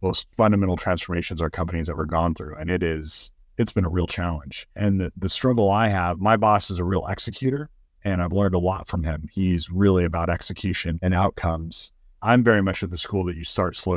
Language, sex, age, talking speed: English, male, 40-59, 225 wpm